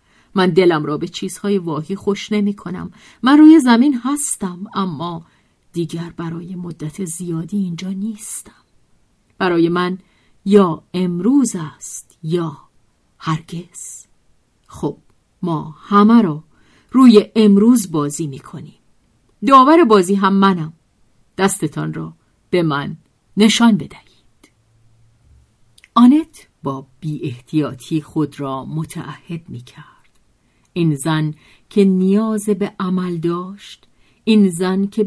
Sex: female